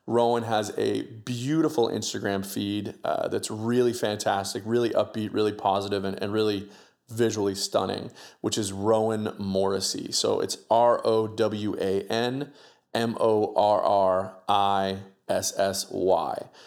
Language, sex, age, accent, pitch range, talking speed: English, male, 30-49, American, 100-115 Hz, 95 wpm